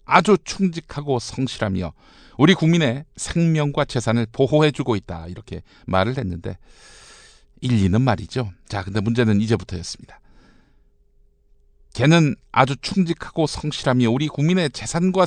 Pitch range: 110-170 Hz